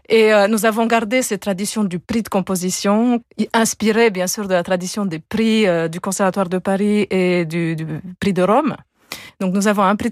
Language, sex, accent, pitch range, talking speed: French, female, French, 190-225 Hz, 210 wpm